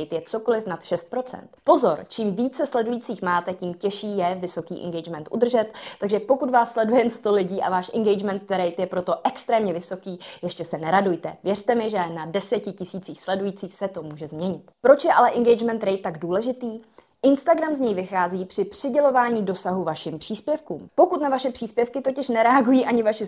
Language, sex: Czech, female